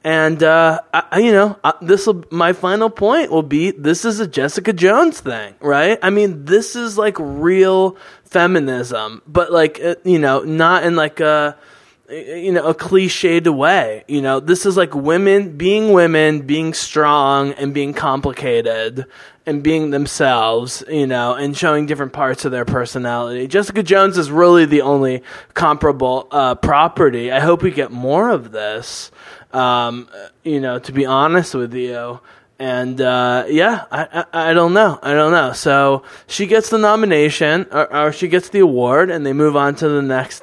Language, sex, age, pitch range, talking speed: English, male, 20-39, 135-180 Hz, 175 wpm